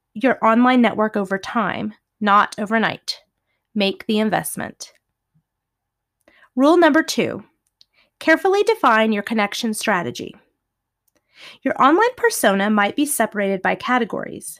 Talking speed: 105 wpm